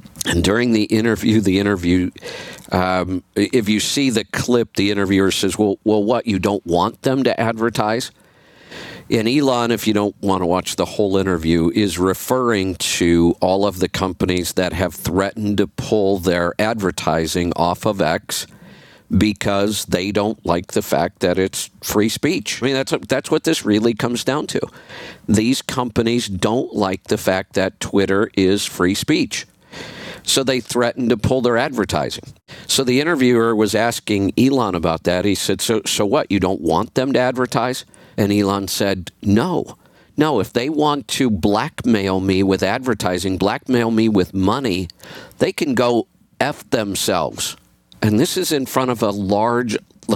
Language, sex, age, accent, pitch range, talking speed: English, male, 50-69, American, 95-120 Hz, 165 wpm